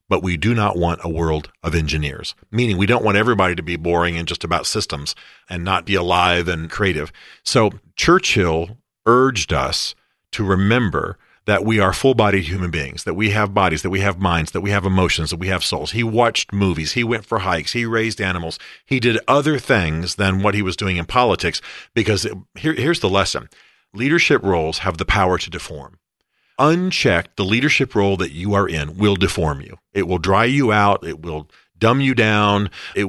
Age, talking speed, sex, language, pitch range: 40-59, 200 wpm, male, English, 85-115 Hz